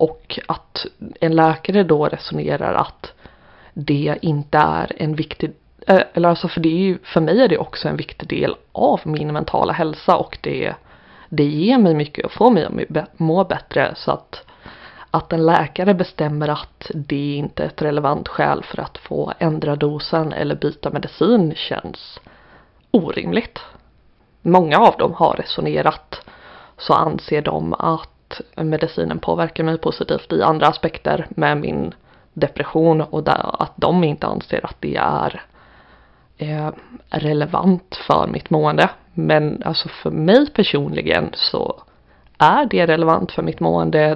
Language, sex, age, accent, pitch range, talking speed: Swedish, female, 20-39, native, 150-185 Hz, 145 wpm